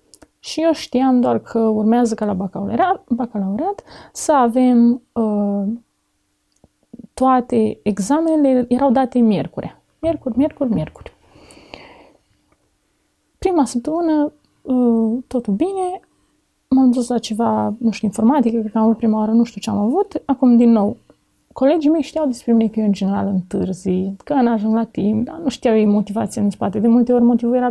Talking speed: 160 wpm